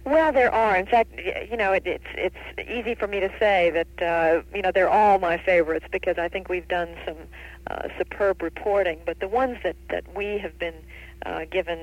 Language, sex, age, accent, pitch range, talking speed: English, female, 50-69, American, 160-185 Hz, 215 wpm